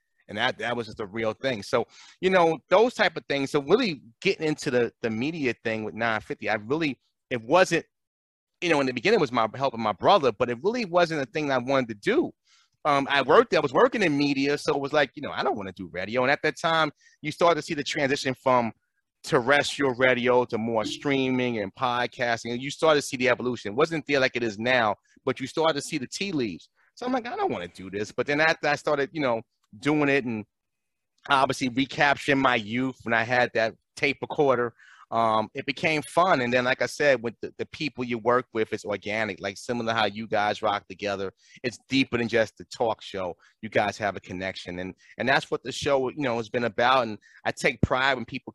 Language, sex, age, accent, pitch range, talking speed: English, male, 30-49, American, 115-145 Hz, 240 wpm